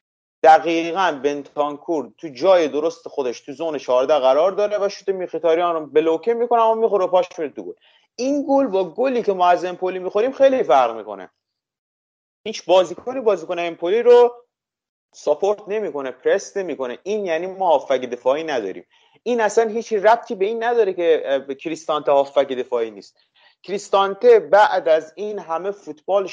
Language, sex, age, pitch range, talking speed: Persian, male, 30-49, 145-210 Hz, 155 wpm